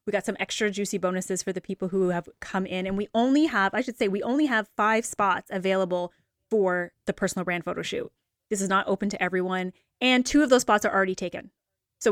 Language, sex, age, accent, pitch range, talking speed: English, female, 20-39, American, 185-215 Hz, 235 wpm